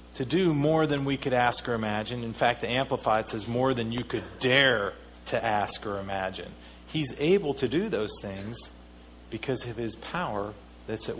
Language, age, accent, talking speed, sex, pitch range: English, 40-59, American, 190 wpm, male, 105-130 Hz